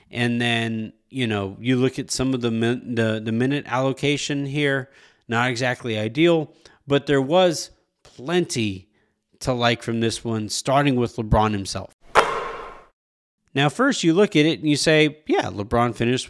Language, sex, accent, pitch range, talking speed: English, male, American, 110-140 Hz, 160 wpm